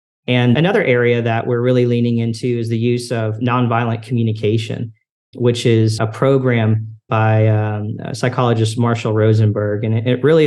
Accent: American